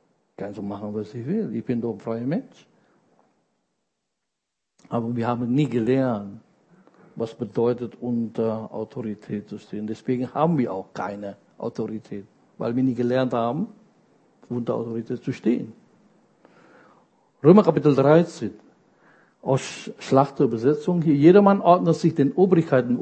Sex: male